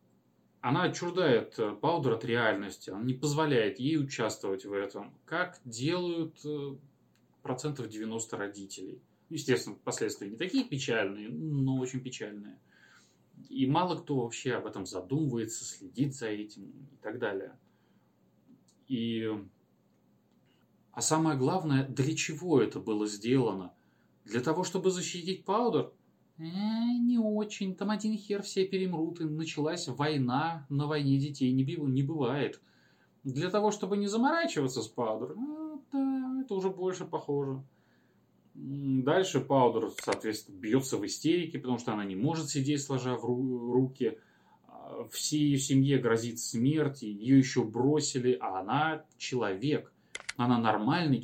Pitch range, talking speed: 115-160 Hz, 125 wpm